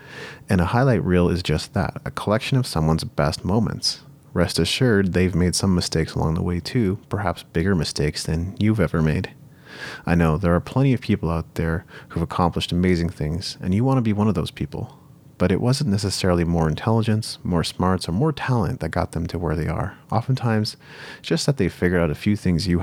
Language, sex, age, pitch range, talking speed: English, male, 30-49, 85-120 Hz, 215 wpm